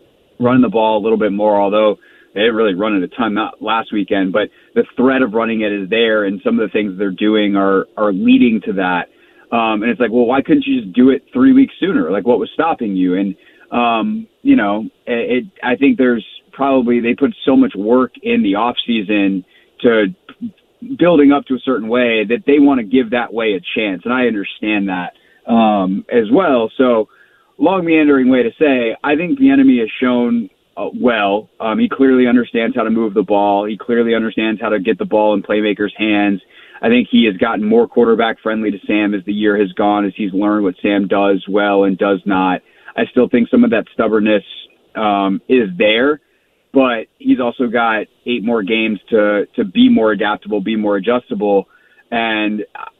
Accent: American